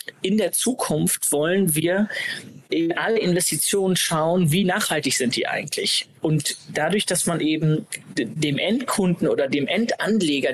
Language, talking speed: German, 135 wpm